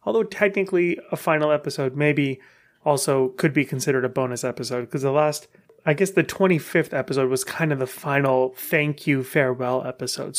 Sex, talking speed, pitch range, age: male, 175 wpm, 140-180 Hz, 30-49